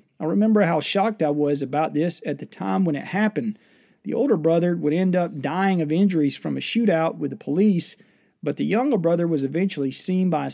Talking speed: 215 wpm